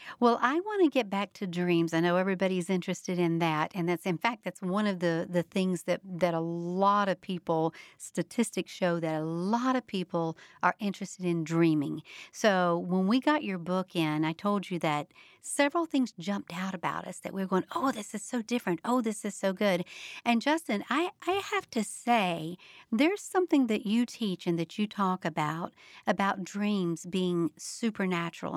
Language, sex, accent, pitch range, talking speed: English, female, American, 180-245 Hz, 195 wpm